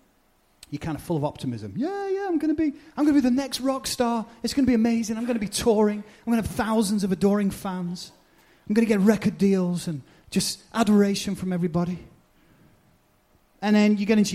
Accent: British